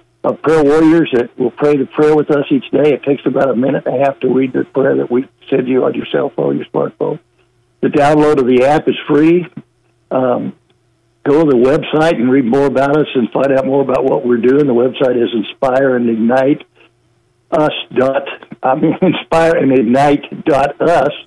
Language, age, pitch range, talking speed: English, 60-79, 125-150 Hz, 200 wpm